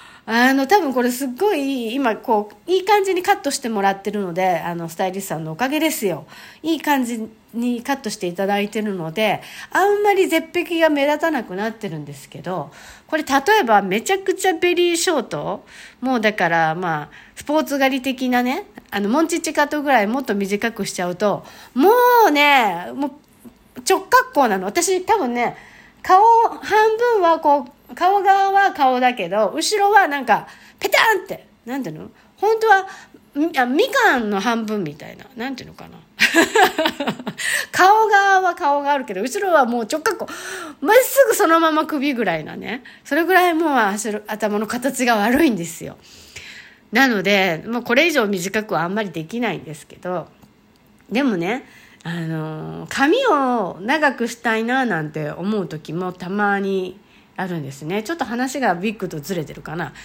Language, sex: Japanese, female